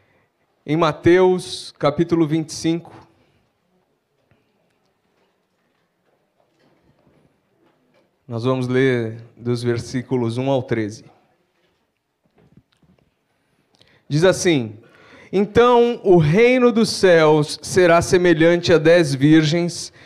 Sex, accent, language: male, Brazilian, Portuguese